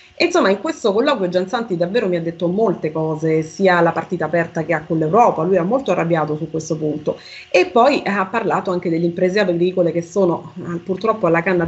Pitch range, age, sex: 165-215 Hz, 30-49, female